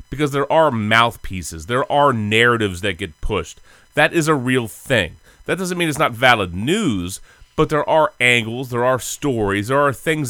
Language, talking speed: English, 185 wpm